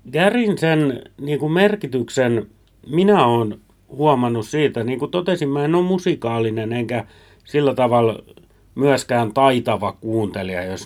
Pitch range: 110-150 Hz